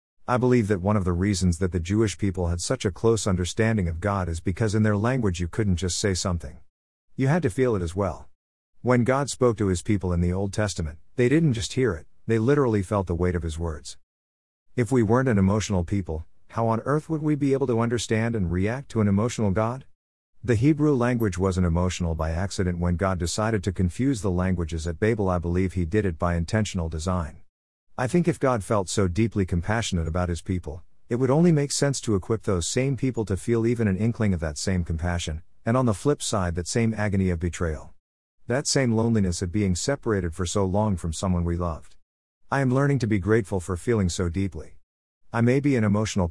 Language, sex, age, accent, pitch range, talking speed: English, male, 50-69, American, 90-115 Hz, 220 wpm